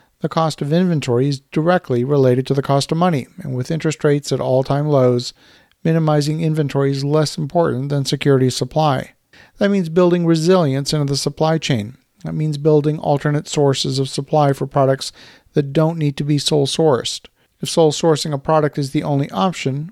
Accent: American